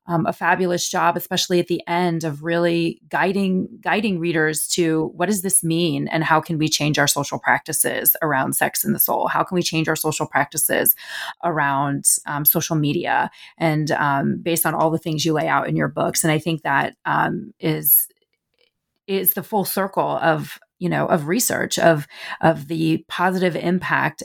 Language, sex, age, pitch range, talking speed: English, female, 30-49, 155-175 Hz, 185 wpm